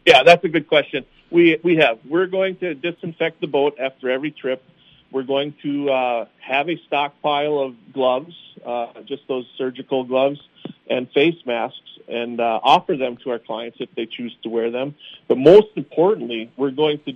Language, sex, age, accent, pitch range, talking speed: English, male, 40-59, American, 125-150 Hz, 185 wpm